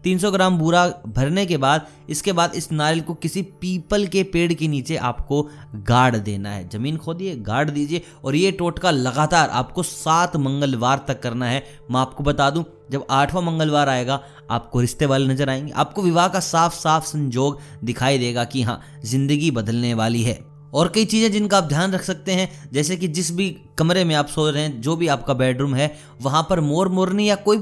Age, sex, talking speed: 20-39, male, 200 wpm